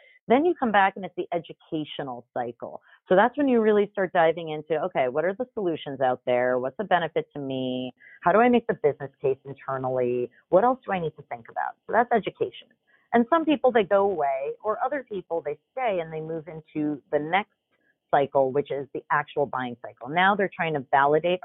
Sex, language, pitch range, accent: female, English, 140-190 Hz, American